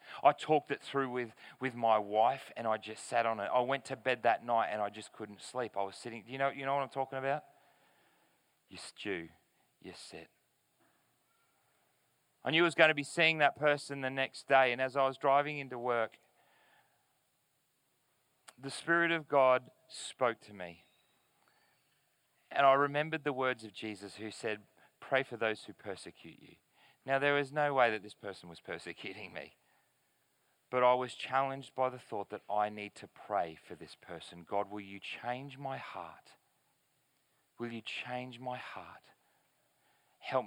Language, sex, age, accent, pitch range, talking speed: English, male, 30-49, Australian, 110-145 Hz, 175 wpm